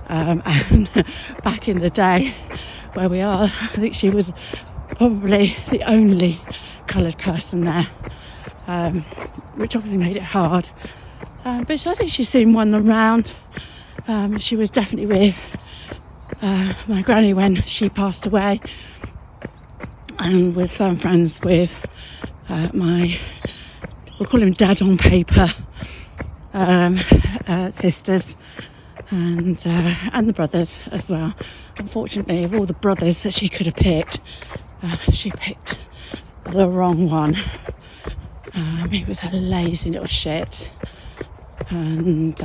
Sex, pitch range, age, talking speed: female, 170-205 Hz, 40-59, 130 wpm